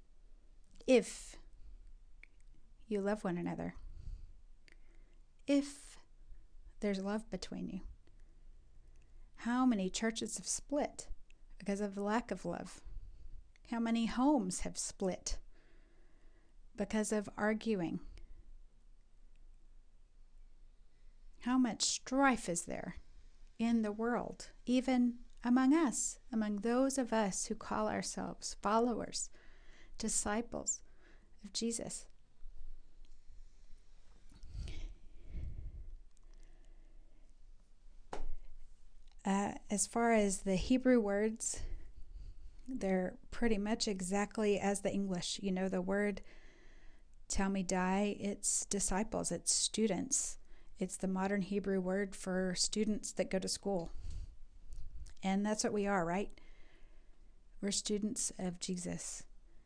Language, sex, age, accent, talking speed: English, female, 40-59, American, 100 wpm